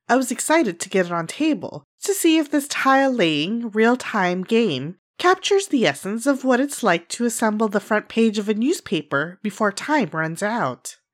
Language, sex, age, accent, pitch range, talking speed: English, female, 30-49, American, 195-295 Hz, 185 wpm